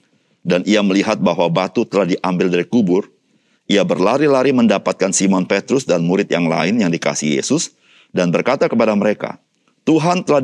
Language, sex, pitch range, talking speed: Indonesian, male, 90-145 Hz, 155 wpm